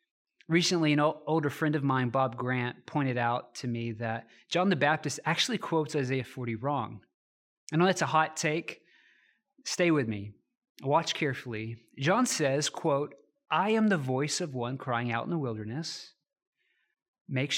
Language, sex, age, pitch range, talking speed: English, male, 30-49, 120-175 Hz, 160 wpm